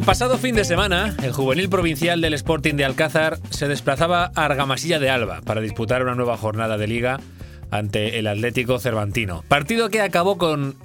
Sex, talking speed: male, 185 wpm